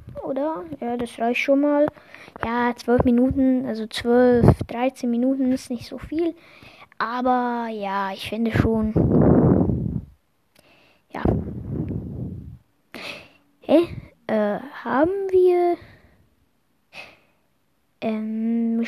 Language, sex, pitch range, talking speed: German, female, 240-295 Hz, 90 wpm